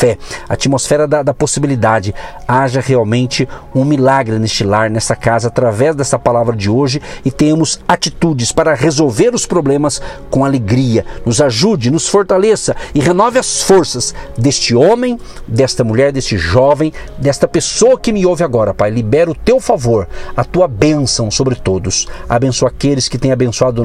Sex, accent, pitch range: male, Brazilian, 120-155 Hz